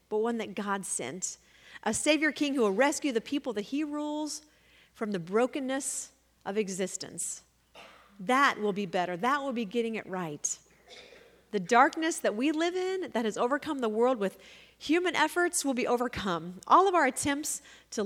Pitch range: 205-290 Hz